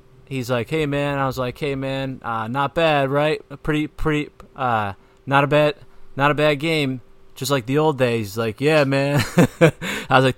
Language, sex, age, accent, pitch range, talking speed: English, male, 30-49, American, 105-135 Hz, 200 wpm